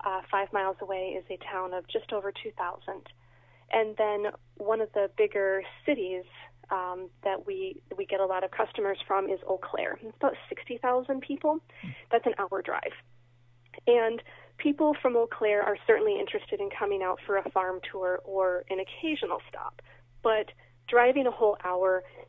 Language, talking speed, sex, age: English, 170 wpm, female, 30-49